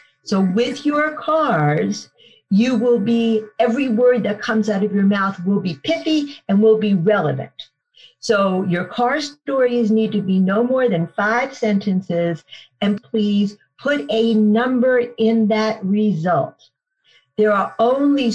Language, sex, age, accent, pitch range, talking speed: English, female, 50-69, American, 185-230 Hz, 145 wpm